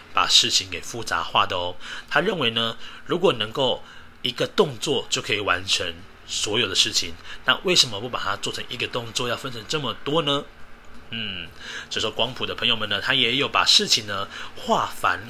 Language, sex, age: Chinese, male, 30-49